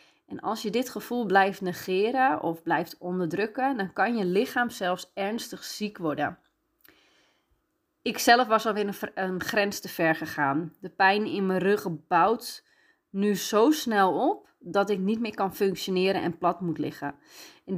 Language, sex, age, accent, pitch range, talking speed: Dutch, female, 30-49, Dutch, 190-275 Hz, 160 wpm